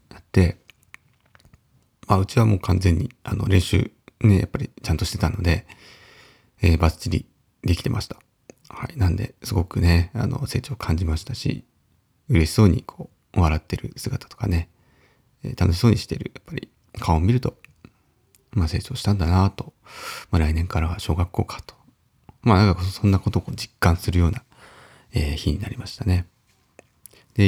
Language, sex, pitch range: Japanese, male, 90-120 Hz